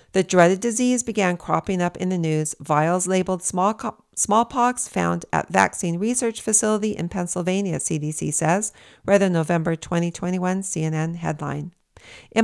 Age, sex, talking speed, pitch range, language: 50-69, female, 145 wpm, 170-215 Hz, English